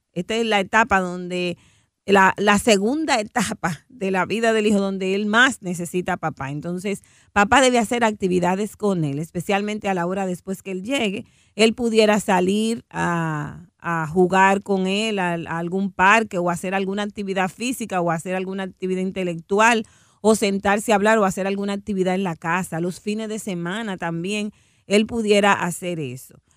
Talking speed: 175 wpm